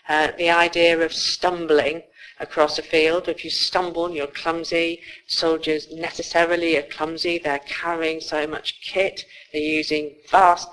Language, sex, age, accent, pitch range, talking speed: English, female, 50-69, British, 150-170 Hz, 140 wpm